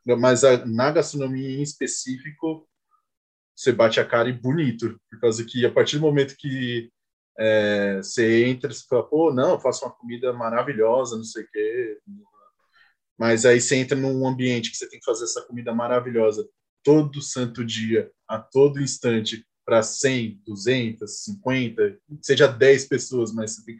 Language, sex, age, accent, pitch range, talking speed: Portuguese, male, 20-39, Brazilian, 120-145 Hz, 170 wpm